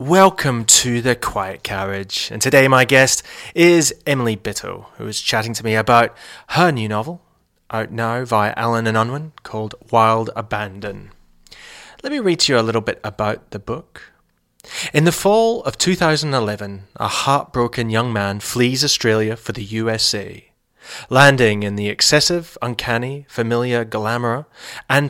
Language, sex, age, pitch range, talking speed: English, male, 30-49, 110-130 Hz, 150 wpm